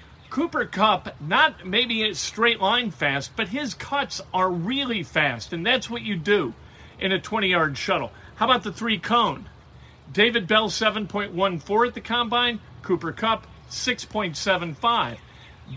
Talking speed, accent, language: 145 wpm, American, English